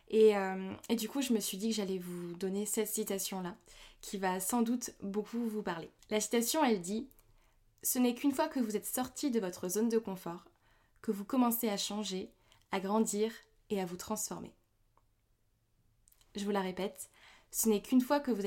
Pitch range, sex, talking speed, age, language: 190-230 Hz, female, 205 wpm, 20-39, French